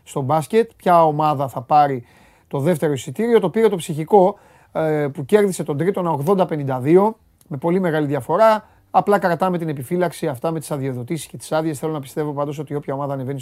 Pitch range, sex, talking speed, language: 135-180 Hz, male, 190 wpm, Greek